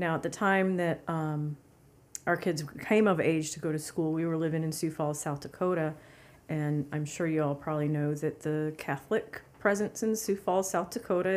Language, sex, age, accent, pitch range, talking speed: English, female, 40-59, American, 160-215 Hz, 205 wpm